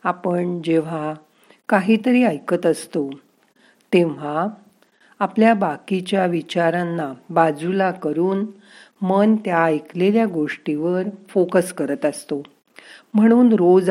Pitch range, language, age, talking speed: 155-200 Hz, Marathi, 50-69, 85 wpm